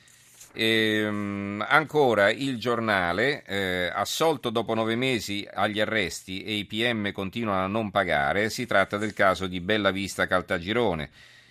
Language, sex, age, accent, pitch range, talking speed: Italian, male, 40-59, native, 90-115 Hz, 125 wpm